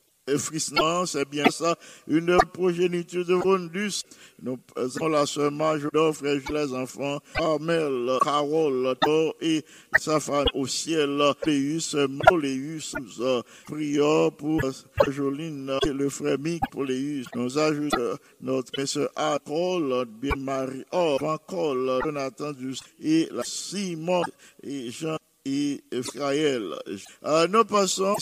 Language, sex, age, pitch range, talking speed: English, male, 50-69, 135-160 Hz, 115 wpm